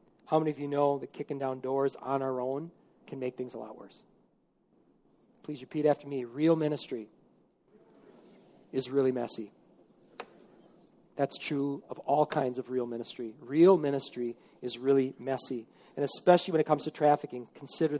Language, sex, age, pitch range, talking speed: English, male, 40-59, 145-195 Hz, 160 wpm